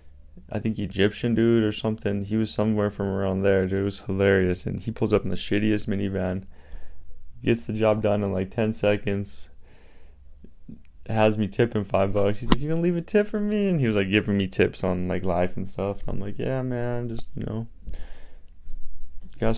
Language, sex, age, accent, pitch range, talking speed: English, male, 20-39, American, 80-110 Hz, 210 wpm